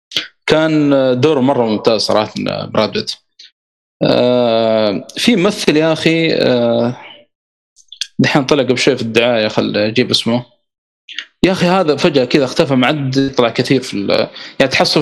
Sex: male